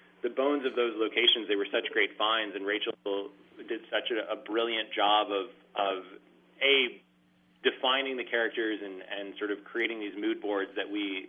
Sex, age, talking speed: male, 30-49, 180 wpm